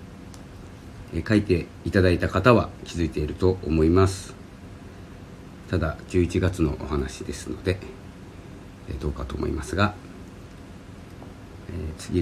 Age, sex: 50-69, male